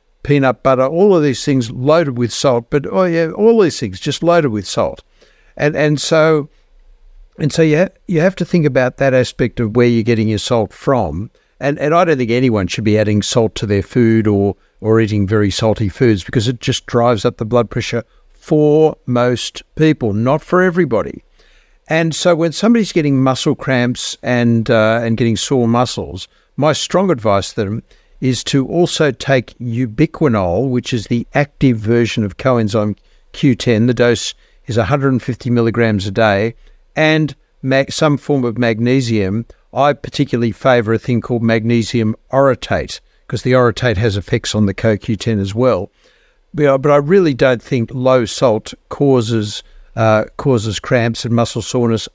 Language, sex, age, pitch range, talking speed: English, male, 60-79, 115-145 Hz, 170 wpm